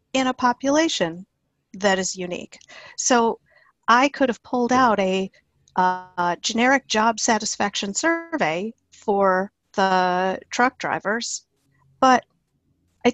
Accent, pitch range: American, 190-240 Hz